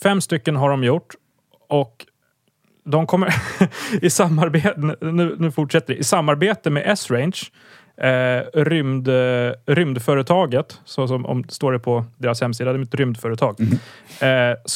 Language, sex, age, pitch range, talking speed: English, male, 30-49, 125-155 Hz, 140 wpm